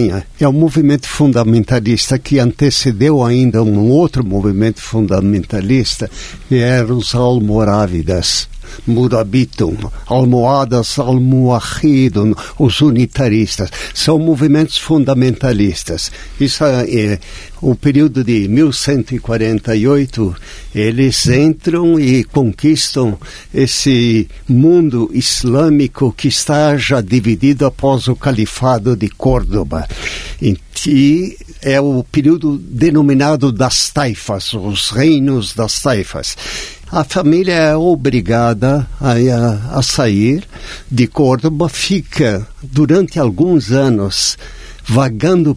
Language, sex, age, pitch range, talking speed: Portuguese, male, 60-79, 115-145 Hz, 90 wpm